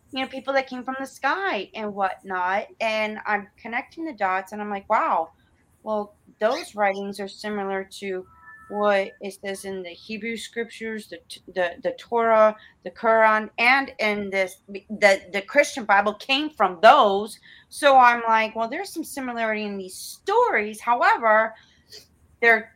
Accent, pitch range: American, 200-260 Hz